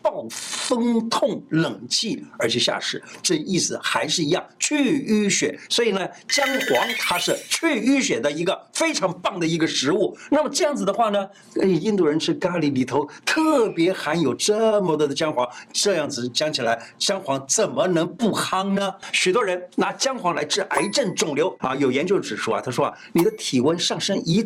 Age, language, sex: 50-69, Chinese, male